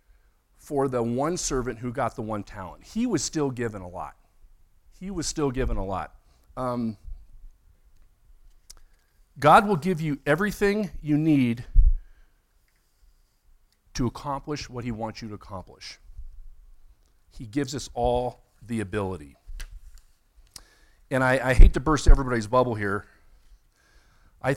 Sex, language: male, English